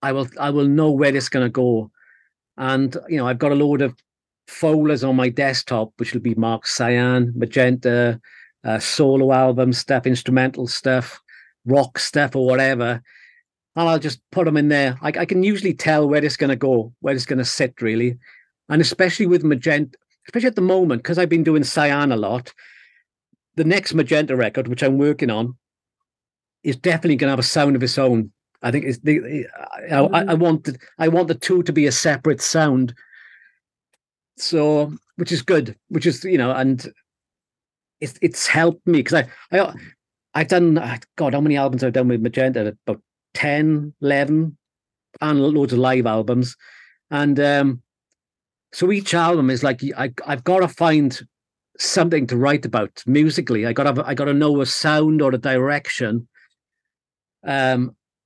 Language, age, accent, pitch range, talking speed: English, 40-59, British, 125-155 Hz, 180 wpm